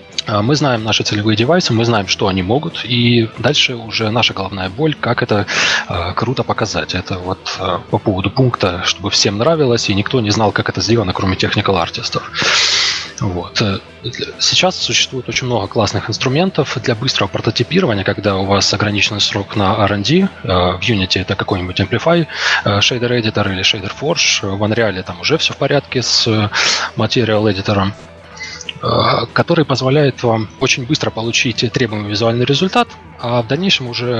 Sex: male